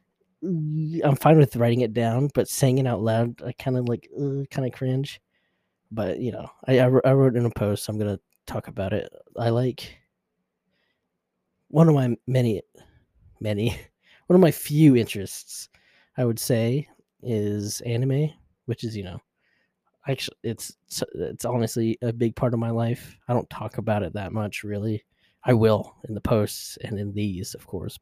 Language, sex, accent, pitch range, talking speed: English, male, American, 105-130 Hz, 175 wpm